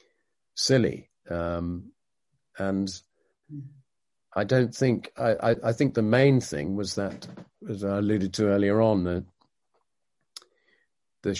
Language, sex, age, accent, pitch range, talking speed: English, male, 50-69, British, 90-110 Hz, 120 wpm